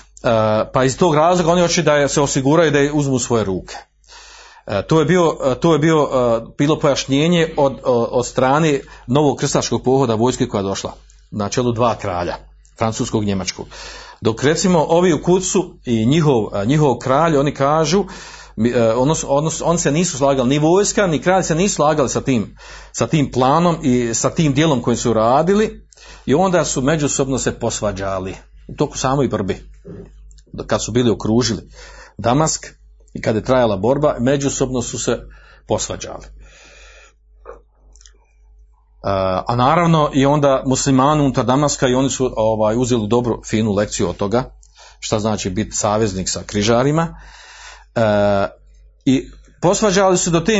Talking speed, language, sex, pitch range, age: 155 wpm, Croatian, male, 115-165 Hz, 40-59